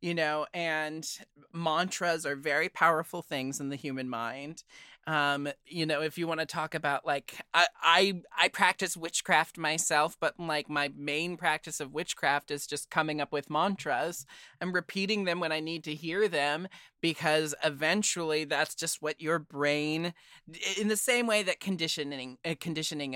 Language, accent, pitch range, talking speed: English, American, 145-175 Hz, 170 wpm